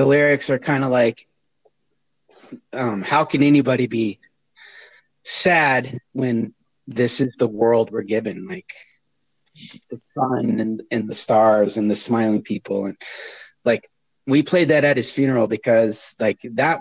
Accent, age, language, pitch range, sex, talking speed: American, 30-49, English, 110-135 Hz, male, 145 wpm